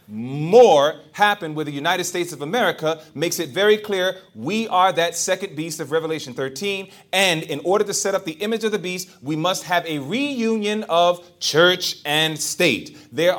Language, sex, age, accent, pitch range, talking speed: English, male, 30-49, American, 175-240 Hz, 185 wpm